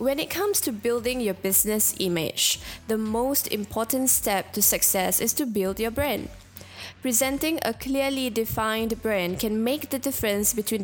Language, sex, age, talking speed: English, female, 10-29, 160 wpm